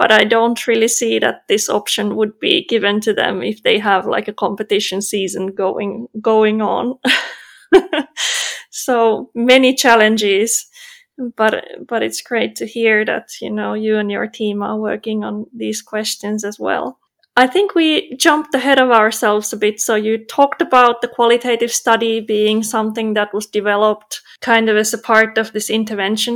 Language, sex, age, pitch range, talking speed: English, female, 20-39, 215-255 Hz, 170 wpm